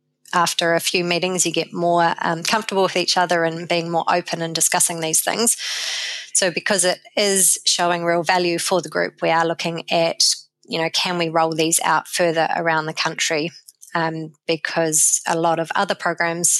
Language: English